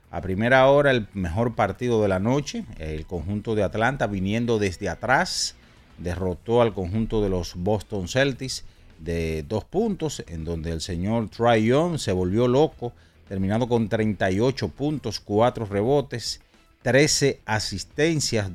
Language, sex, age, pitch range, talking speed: Spanish, male, 40-59, 95-120 Hz, 135 wpm